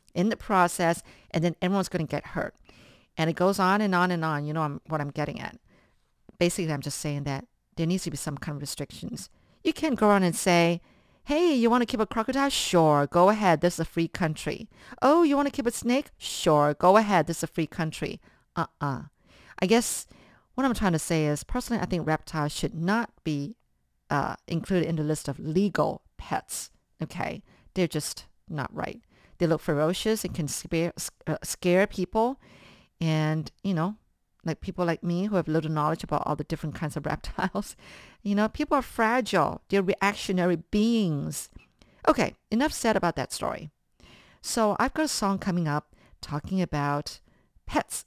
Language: English